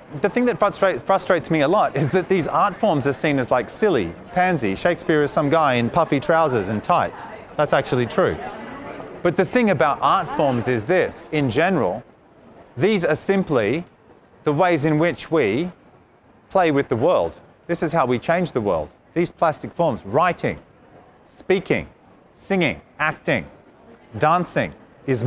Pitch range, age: 150-185 Hz, 30-49